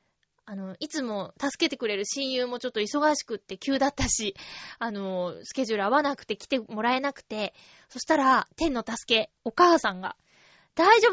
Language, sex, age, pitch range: Japanese, female, 20-39, 225-335 Hz